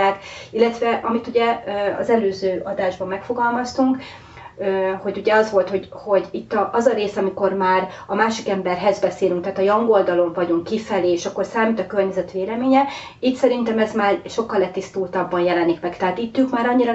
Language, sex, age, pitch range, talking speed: Hungarian, female, 30-49, 185-235 Hz, 165 wpm